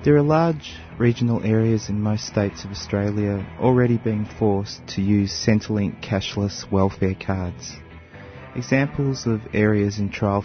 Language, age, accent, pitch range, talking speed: English, 30-49, Australian, 100-120 Hz, 140 wpm